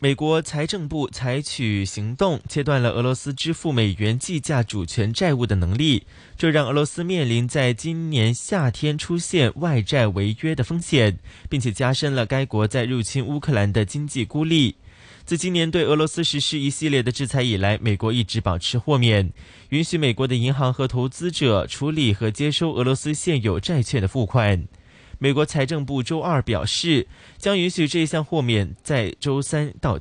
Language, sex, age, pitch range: Chinese, male, 20-39, 115-155 Hz